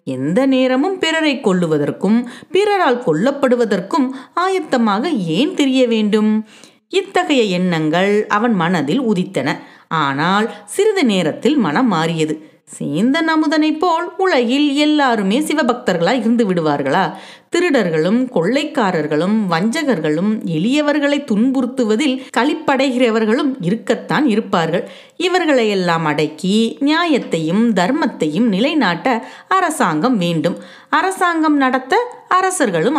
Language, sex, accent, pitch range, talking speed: Tamil, female, native, 185-280 Hz, 85 wpm